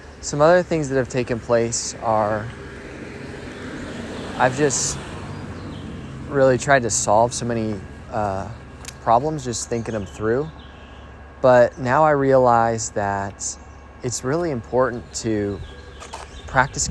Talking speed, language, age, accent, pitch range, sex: 115 wpm, English, 20-39, American, 90-120 Hz, male